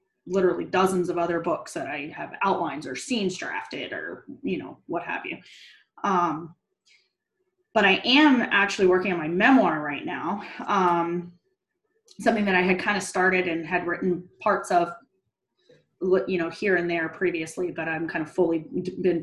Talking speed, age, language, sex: 170 wpm, 20-39, English, female